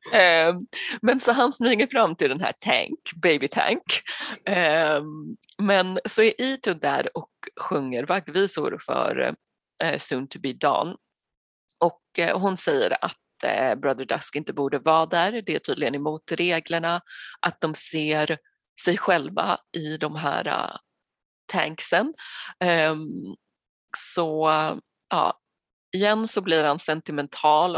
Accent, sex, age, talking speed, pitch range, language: native, female, 30-49, 120 wpm, 155-230 Hz, Swedish